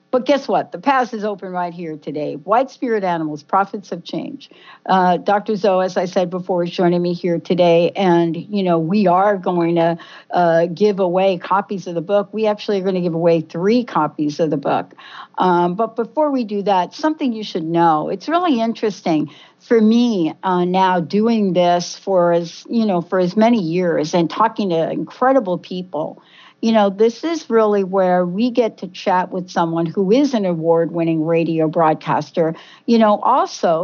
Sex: female